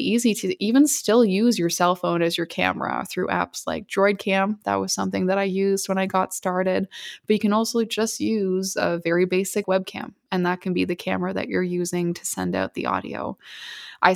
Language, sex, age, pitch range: English, female, 20-39, 175-200 Hz